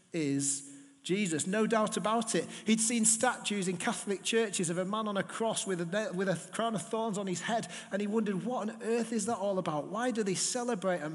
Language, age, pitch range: English, 40-59, 150-210 Hz